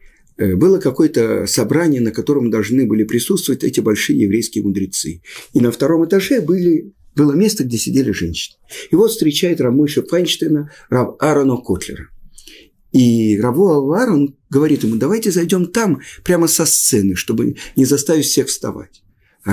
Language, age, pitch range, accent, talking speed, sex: Russian, 50-69, 105-150 Hz, native, 145 wpm, male